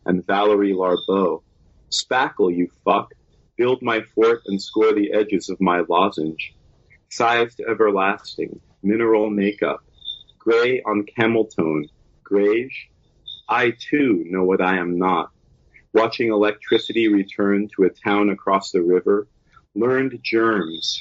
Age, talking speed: 40-59, 125 wpm